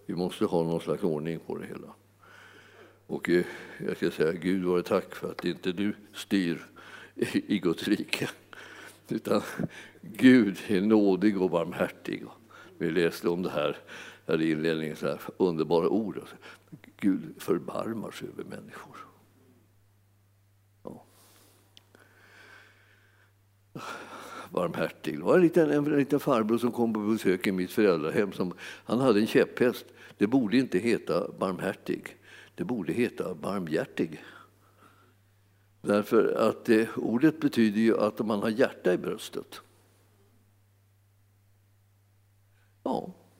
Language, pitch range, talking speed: Swedish, 95-105 Hz, 120 wpm